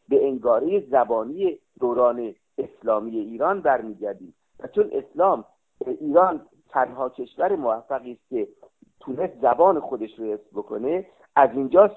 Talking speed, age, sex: 115 wpm, 50-69, male